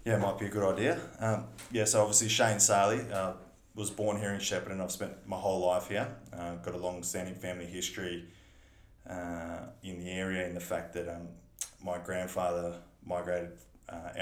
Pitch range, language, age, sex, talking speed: 90-105 Hz, English, 20-39, male, 185 wpm